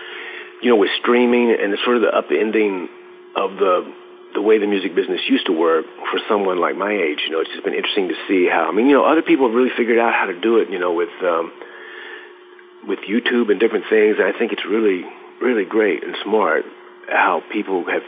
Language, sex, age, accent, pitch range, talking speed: English, male, 50-69, American, 360-420 Hz, 230 wpm